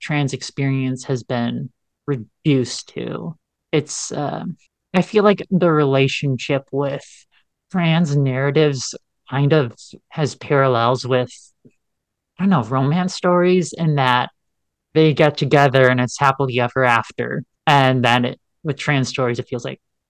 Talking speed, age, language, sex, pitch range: 135 wpm, 30-49, English, male, 130-165 Hz